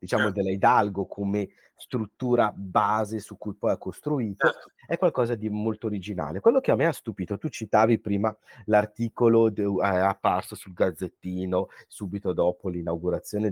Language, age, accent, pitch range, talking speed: Italian, 30-49, native, 100-125 Hz, 150 wpm